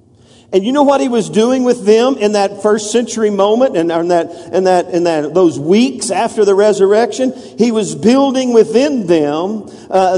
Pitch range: 155-230 Hz